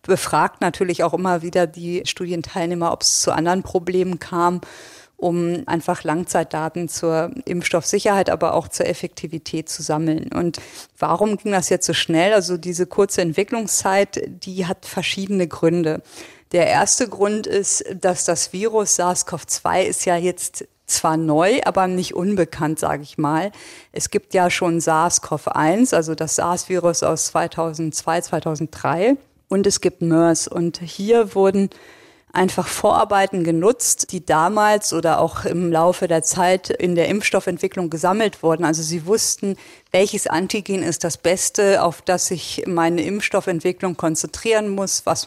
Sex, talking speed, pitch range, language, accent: female, 145 wpm, 170-195 Hz, German, German